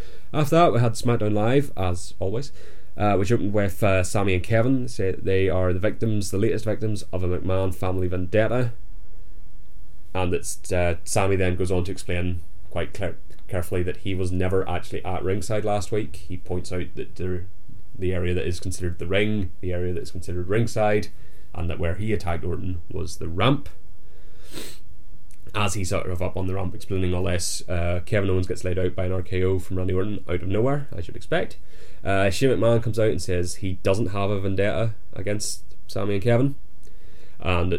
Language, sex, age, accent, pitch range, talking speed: English, male, 20-39, British, 90-105 Hz, 195 wpm